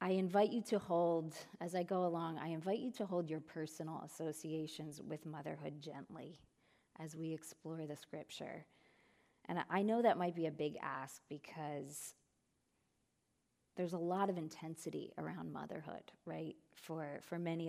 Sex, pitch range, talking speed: female, 155-185 Hz, 155 wpm